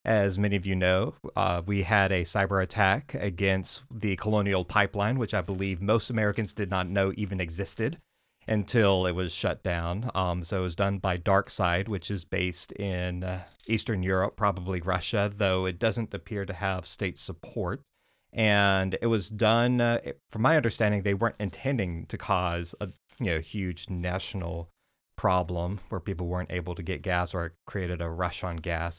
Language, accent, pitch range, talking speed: English, American, 90-105 Hz, 175 wpm